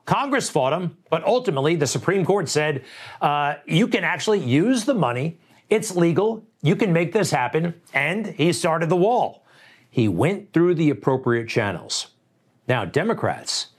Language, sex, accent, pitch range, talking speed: English, male, American, 130-175 Hz, 155 wpm